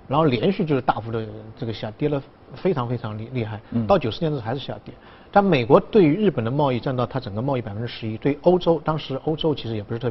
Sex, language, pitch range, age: male, Chinese, 115-155 Hz, 50-69